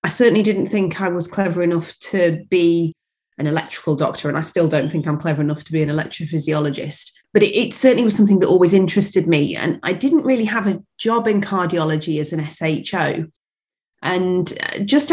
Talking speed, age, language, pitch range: 195 wpm, 30-49, English, 160-200 Hz